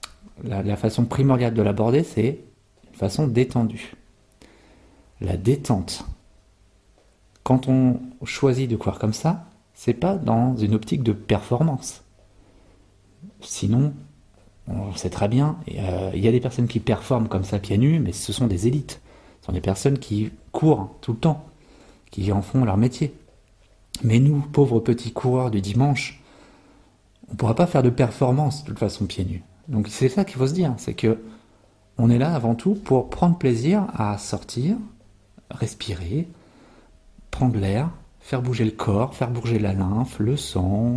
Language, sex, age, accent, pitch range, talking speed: French, male, 40-59, French, 100-135 Hz, 165 wpm